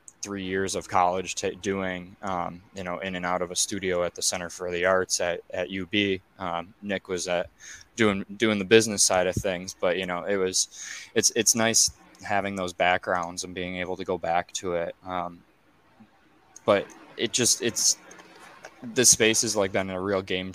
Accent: American